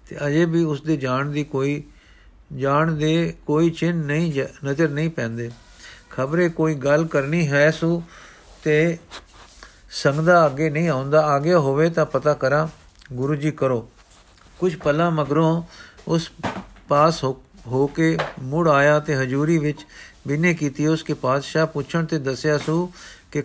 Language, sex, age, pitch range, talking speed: Punjabi, male, 50-69, 135-160 Hz, 145 wpm